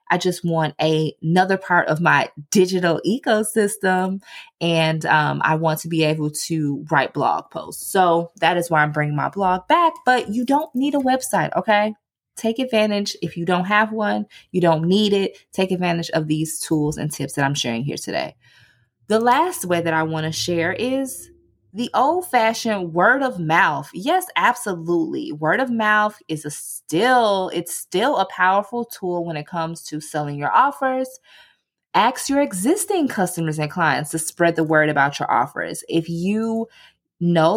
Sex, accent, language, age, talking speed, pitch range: female, American, English, 20-39, 175 wpm, 165-240 Hz